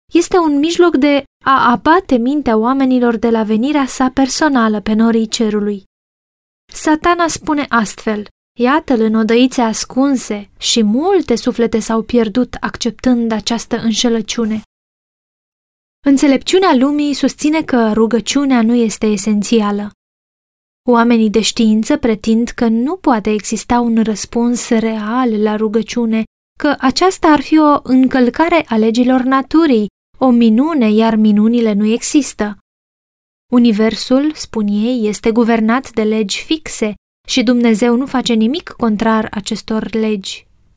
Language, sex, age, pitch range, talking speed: Romanian, female, 20-39, 225-270 Hz, 120 wpm